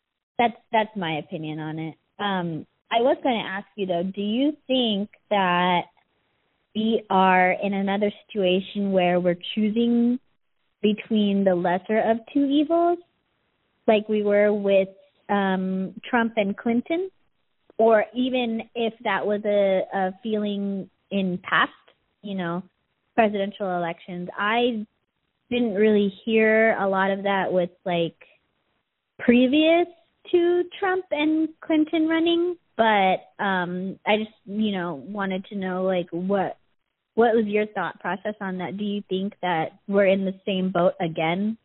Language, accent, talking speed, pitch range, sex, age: English, American, 140 wpm, 180-225 Hz, female, 20-39